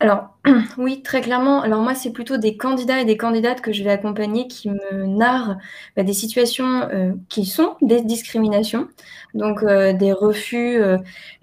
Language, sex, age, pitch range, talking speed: French, female, 20-39, 215-275 Hz, 175 wpm